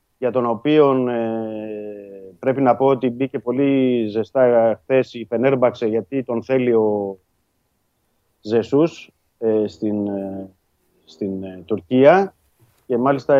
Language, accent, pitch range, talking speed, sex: Greek, native, 110-140 Hz, 115 wpm, male